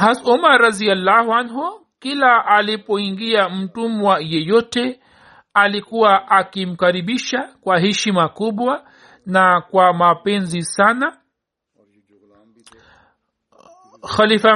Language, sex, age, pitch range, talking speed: Swahili, male, 50-69, 190-230 Hz, 75 wpm